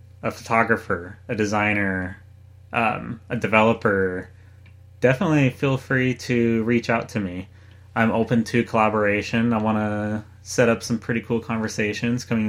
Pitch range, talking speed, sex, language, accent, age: 100-115 Hz, 140 wpm, male, English, American, 30-49